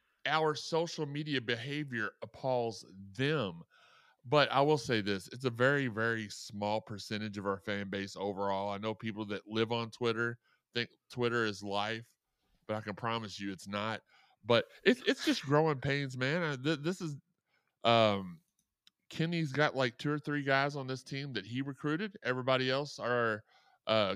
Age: 30-49